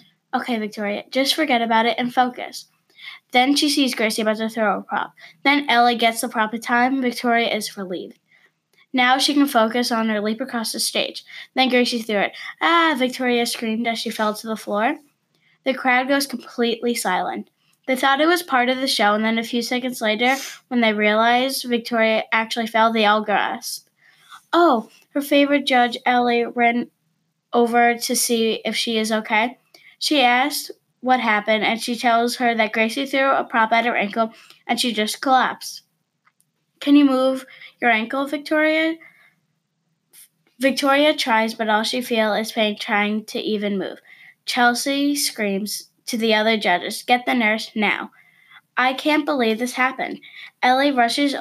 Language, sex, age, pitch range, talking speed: English, female, 10-29, 220-260 Hz, 170 wpm